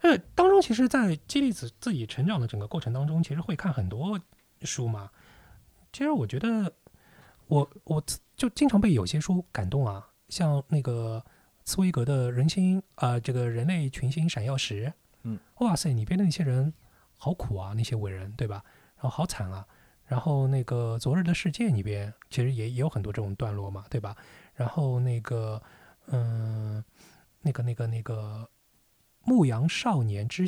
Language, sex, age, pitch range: Chinese, male, 20-39, 110-145 Hz